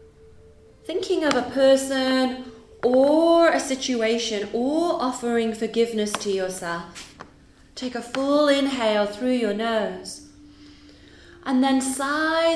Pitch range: 195-260 Hz